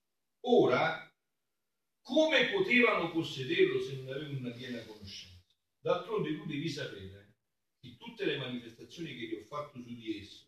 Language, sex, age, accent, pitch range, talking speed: Italian, male, 50-69, native, 115-180 Hz, 145 wpm